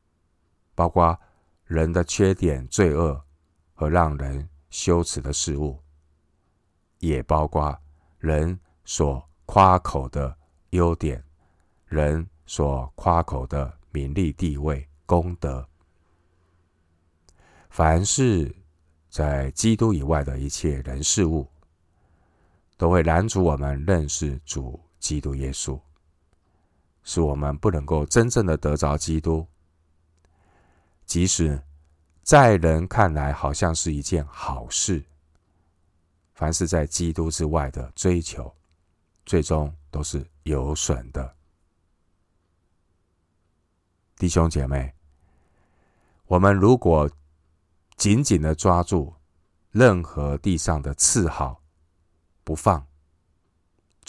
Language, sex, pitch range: Chinese, male, 75-90 Hz